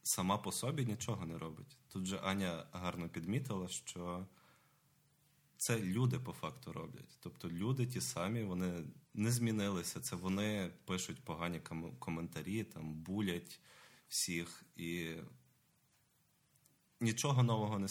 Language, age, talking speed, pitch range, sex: Ukrainian, 20-39, 120 wpm, 85-120 Hz, male